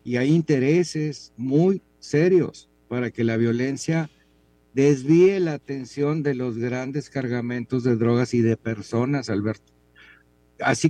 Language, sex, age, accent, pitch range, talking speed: Spanish, male, 50-69, Mexican, 110-150 Hz, 125 wpm